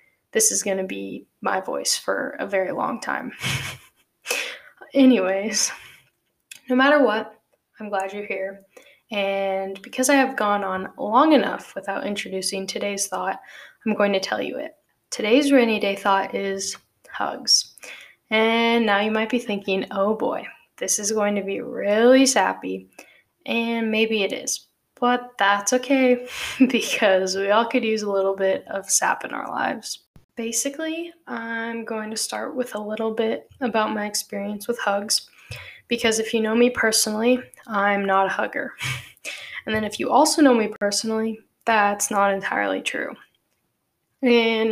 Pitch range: 195-240 Hz